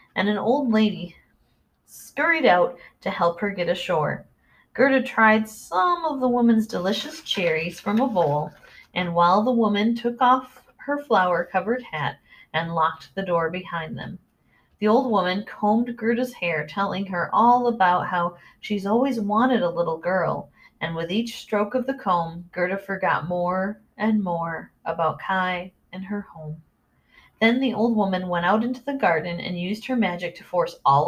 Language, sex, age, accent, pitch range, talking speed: English, female, 30-49, American, 175-230 Hz, 170 wpm